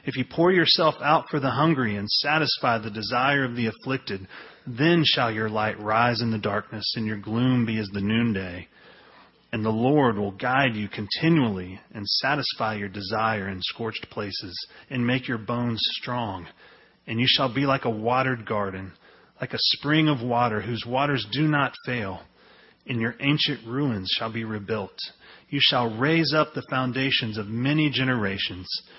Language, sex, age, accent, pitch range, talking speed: English, male, 30-49, American, 110-140 Hz, 170 wpm